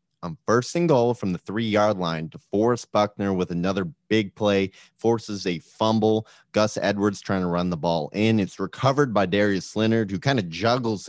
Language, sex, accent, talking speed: English, male, American, 190 wpm